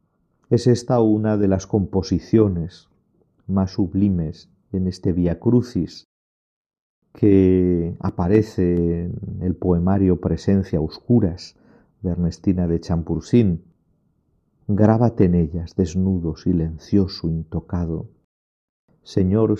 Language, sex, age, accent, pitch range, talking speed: Spanish, male, 50-69, Spanish, 85-100 Hz, 90 wpm